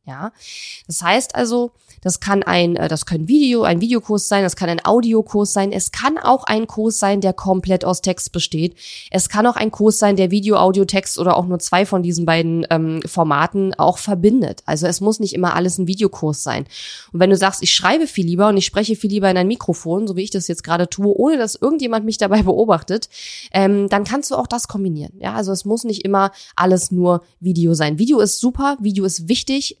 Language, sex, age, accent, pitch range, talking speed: German, female, 20-39, German, 170-210 Hz, 225 wpm